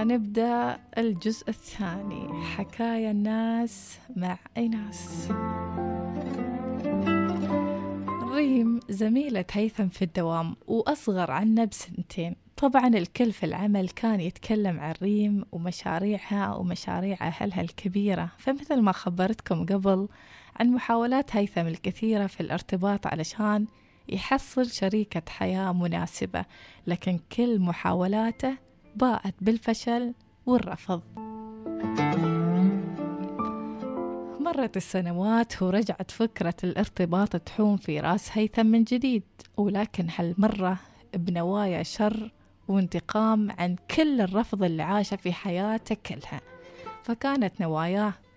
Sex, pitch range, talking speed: female, 180-225 Hz, 90 wpm